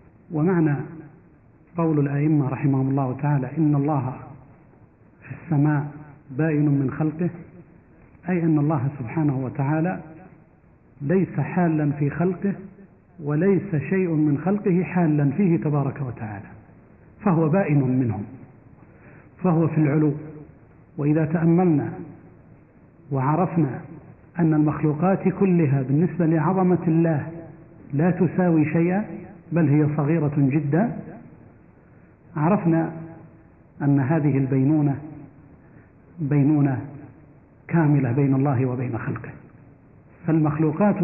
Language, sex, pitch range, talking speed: Arabic, male, 140-165 Hz, 90 wpm